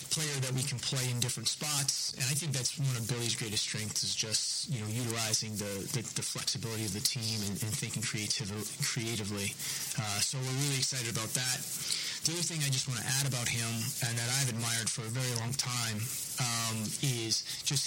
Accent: American